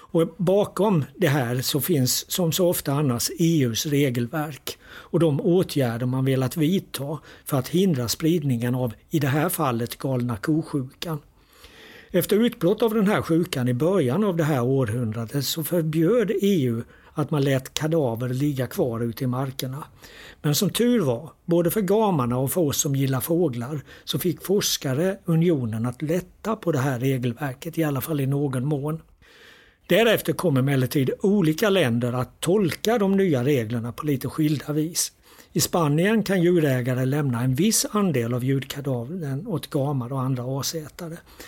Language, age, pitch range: Swedish, 60-79, 130-170 Hz